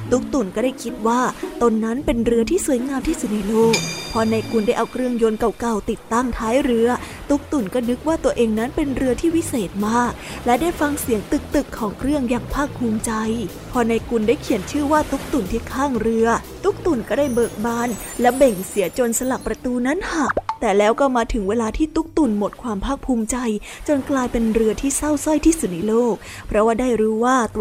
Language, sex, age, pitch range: Thai, female, 20-39, 225-275 Hz